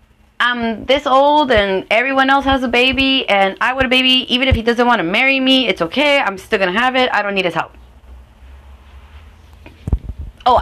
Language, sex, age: English, female, 30-49